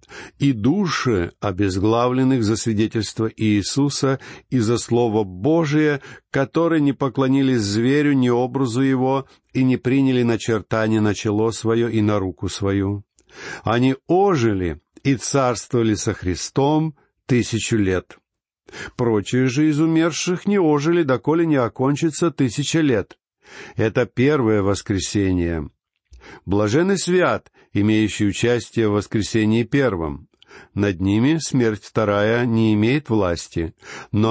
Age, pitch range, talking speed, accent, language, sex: 50-69, 105-140 Hz, 115 wpm, native, Russian, male